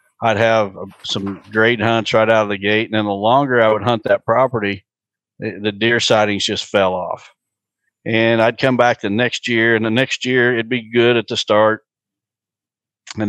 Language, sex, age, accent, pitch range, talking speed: English, male, 50-69, American, 105-120 Hz, 195 wpm